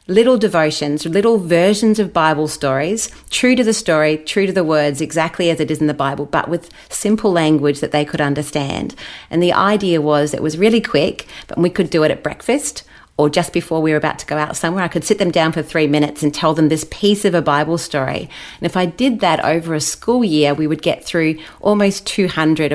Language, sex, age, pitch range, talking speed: English, female, 30-49, 150-185 Hz, 230 wpm